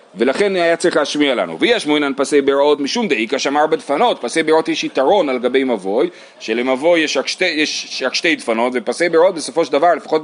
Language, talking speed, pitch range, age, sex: Hebrew, 175 wpm, 140-200 Hz, 30-49, male